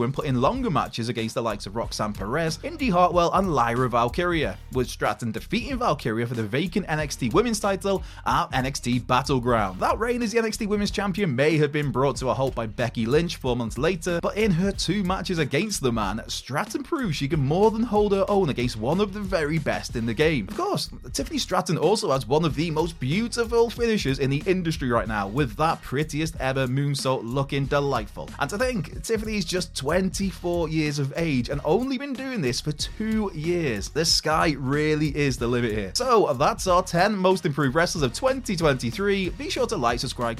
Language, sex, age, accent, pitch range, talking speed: English, male, 20-39, British, 120-185 Hz, 205 wpm